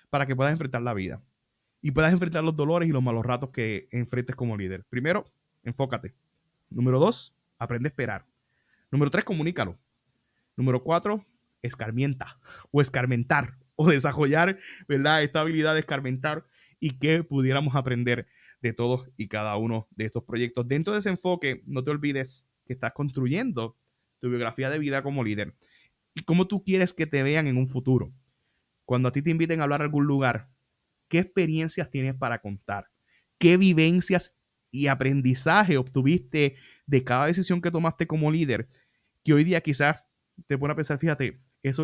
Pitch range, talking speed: 125-155 Hz, 165 wpm